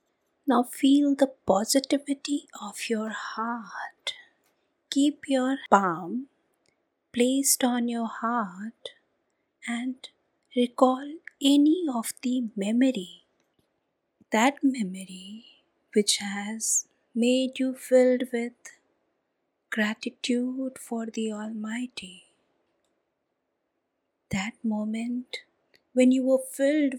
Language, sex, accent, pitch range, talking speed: English, female, Indian, 215-255 Hz, 85 wpm